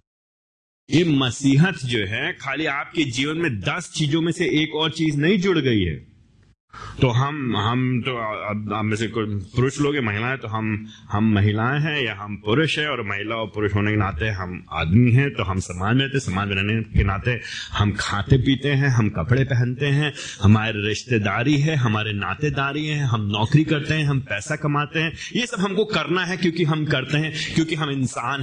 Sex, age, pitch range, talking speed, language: male, 30-49, 110-155 Hz, 185 wpm, Hindi